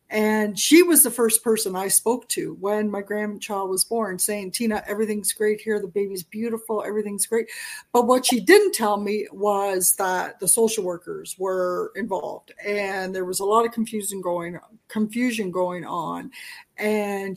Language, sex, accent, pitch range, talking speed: English, female, American, 200-245 Hz, 170 wpm